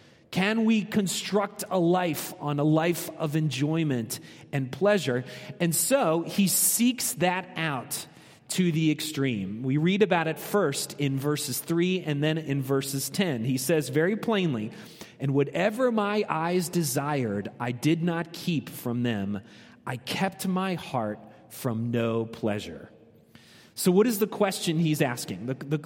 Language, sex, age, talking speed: English, male, 30-49, 150 wpm